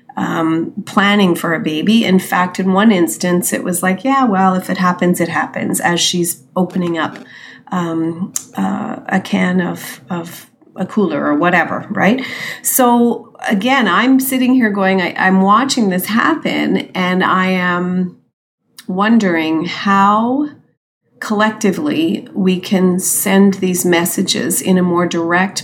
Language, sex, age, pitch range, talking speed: English, female, 40-59, 185-225 Hz, 145 wpm